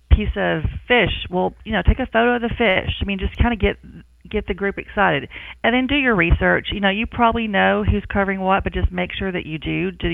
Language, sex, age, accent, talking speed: English, female, 40-59, American, 255 wpm